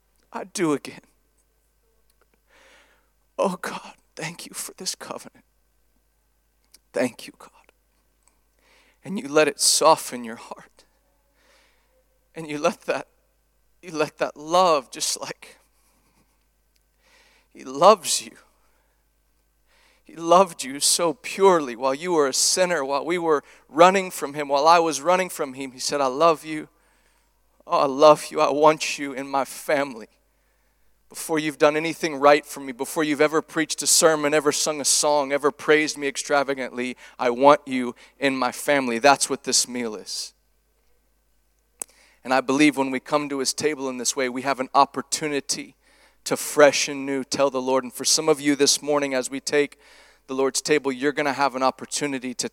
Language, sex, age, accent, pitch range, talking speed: English, male, 40-59, American, 130-155 Hz, 165 wpm